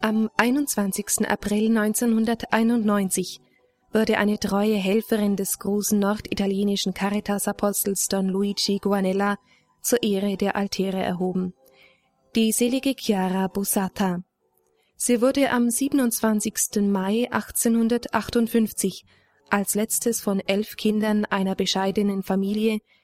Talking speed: 100 wpm